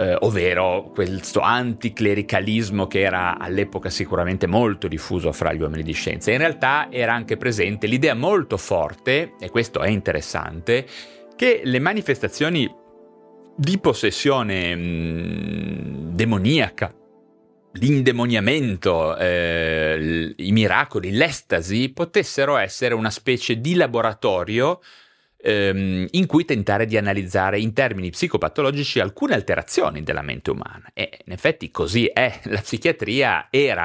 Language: Italian